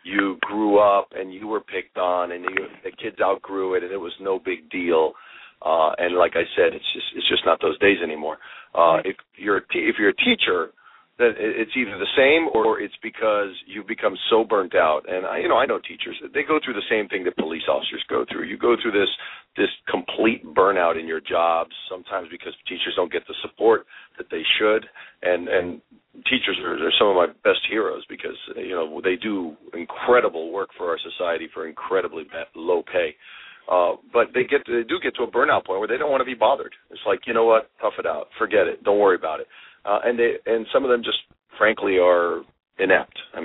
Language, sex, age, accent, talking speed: English, male, 40-59, American, 220 wpm